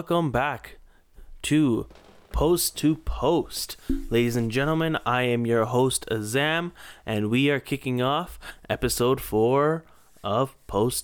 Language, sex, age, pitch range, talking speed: English, male, 20-39, 105-135 Hz, 125 wpm